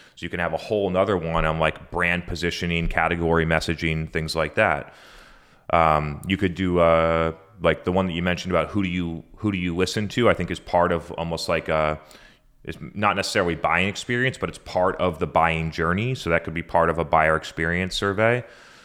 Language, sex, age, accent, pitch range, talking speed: English, male, 30-49, American, 80-95 Hz, 210 wpm